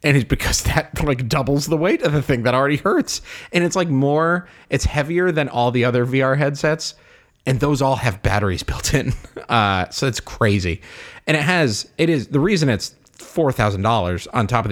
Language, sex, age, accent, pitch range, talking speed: English, male, 30-49, American, 95-125 Hz, 200 wpm